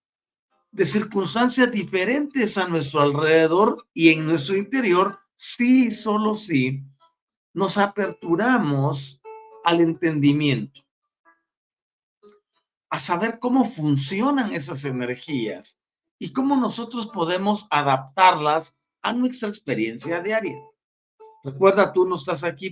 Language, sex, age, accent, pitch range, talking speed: Spanish, male, 50-69, Mexican, 150-210 Hz, 100 wpm